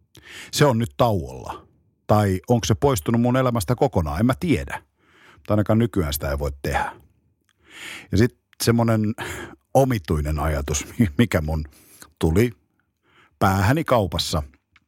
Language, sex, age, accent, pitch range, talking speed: Finnish, male, 50-69, native, 95-130 Hz, 125 wpm